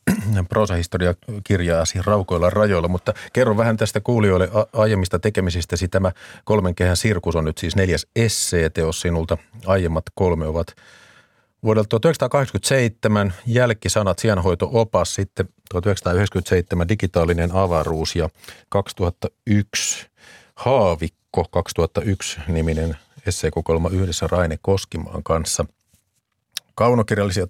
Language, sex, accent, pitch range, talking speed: Finnish, male, native, 85-110 Hz, 95 wpm